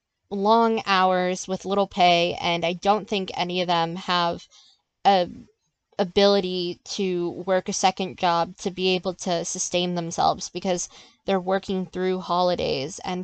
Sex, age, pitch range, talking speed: female, 20-39, 180-215 Hz, 145 wpm